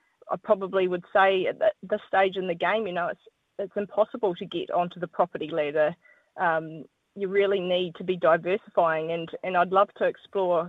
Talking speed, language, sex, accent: 190 wpm, English, female, Australian